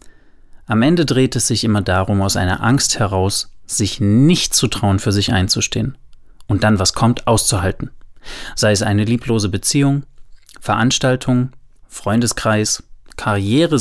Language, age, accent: German, 30-49, German